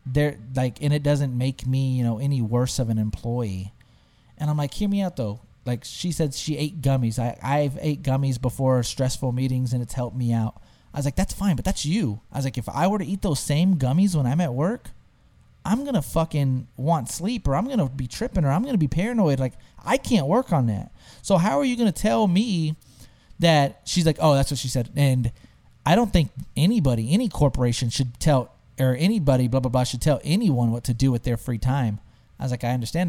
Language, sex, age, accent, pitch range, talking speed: English, male, 30-49, American, 125-165 Hz, 240 wpm